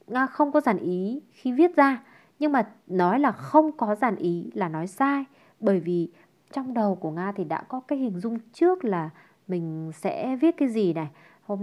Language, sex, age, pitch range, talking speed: Vietnamese, female, 20-39, 180-245 Hz, 205 wpm